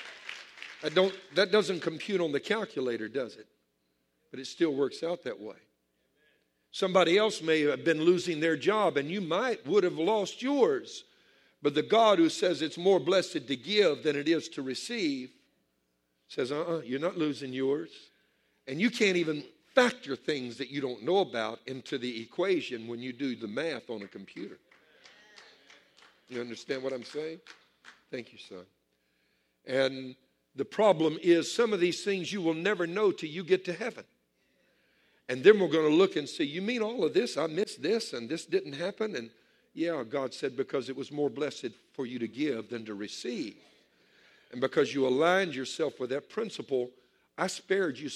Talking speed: 185 wpm